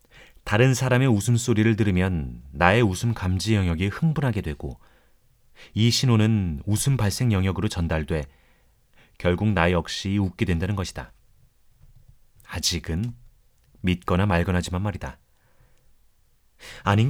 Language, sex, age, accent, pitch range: Korean, male, 30-49, native, 90-120 Hz